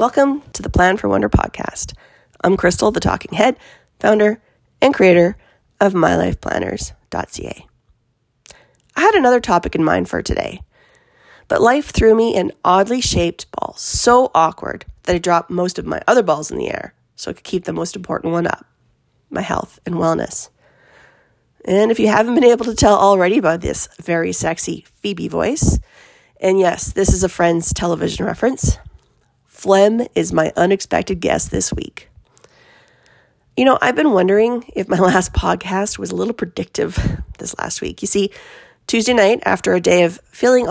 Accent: American